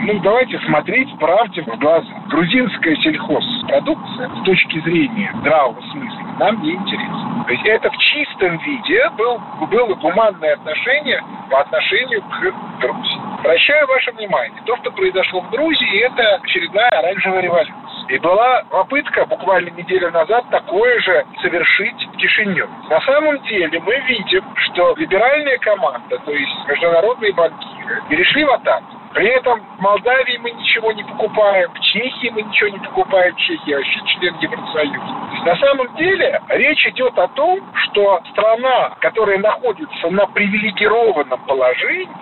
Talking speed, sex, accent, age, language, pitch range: 145 wpm, male, native, 50-69, Russian, 190-285 Hz